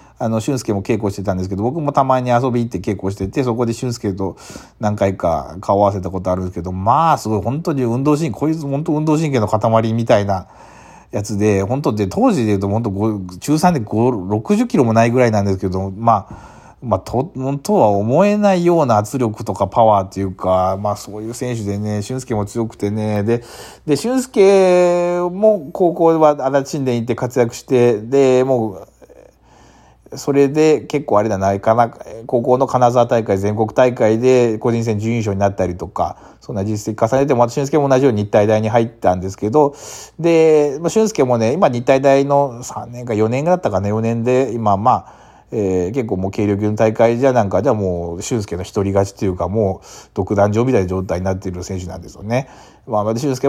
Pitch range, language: 100-130 Hz, Japanese